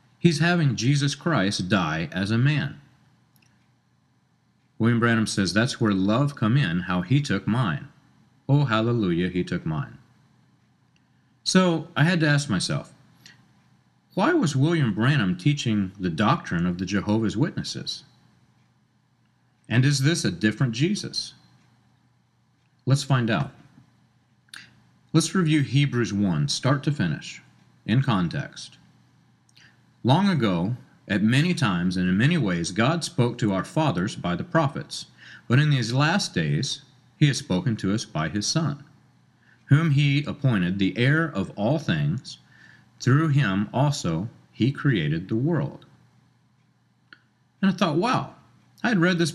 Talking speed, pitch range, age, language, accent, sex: 135 wpm, 115-160 Hz, 40-59, English, American, male